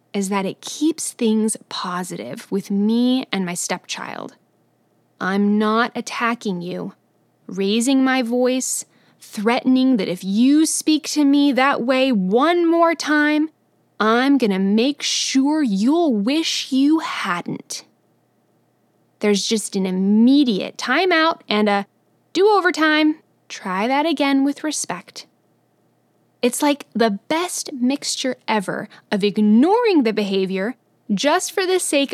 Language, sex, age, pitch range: English, female, 20-39, 210-300 Hz